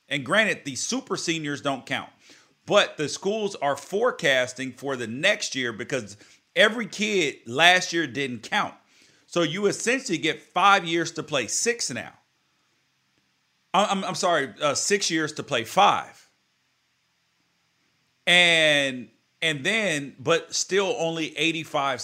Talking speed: 135 wpm